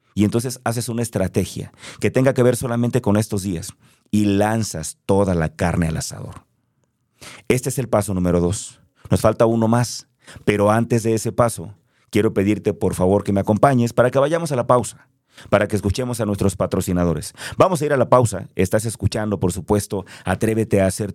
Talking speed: 190 wpm